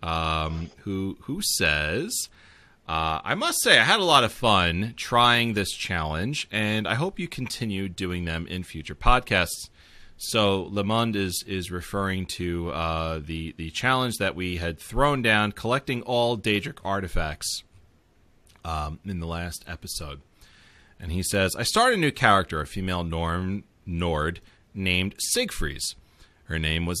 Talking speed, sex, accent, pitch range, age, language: 150 wpm, male, American, 85-105 Hz, 30-49, English